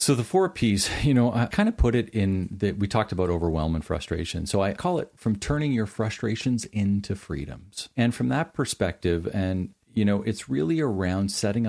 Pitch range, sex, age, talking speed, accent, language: 90-110 Hz, male, 40-59, 205 wpm, American, English